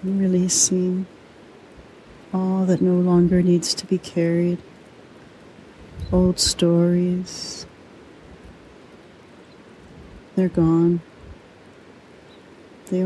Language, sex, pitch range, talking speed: English, female, 170-180 Hz, 65 wpm